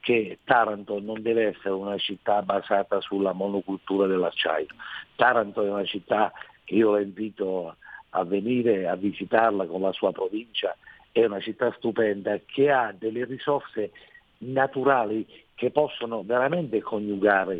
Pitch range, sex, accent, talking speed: 100-120 Hz, male, native, 135 wpm